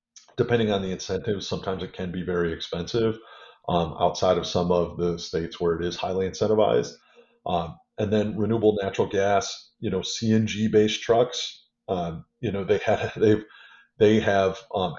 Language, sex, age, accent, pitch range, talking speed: English, male, 30-49, American, 90-110 Hz, 165 wpm